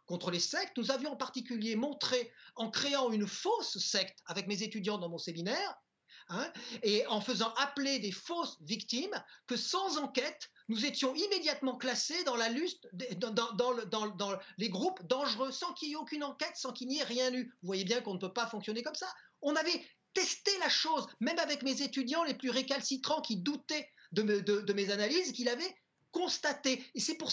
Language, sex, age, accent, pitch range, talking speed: French, male, 40-59, French, 220-300 Hz, 205 wpm